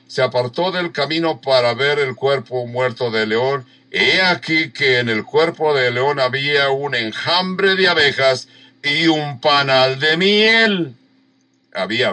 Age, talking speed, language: 60-79, 150 wpm, English